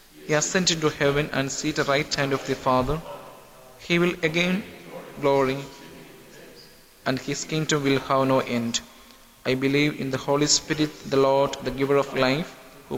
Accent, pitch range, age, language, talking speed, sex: Indian, 135-150 Hz, 20-39, English, 165 wpm, male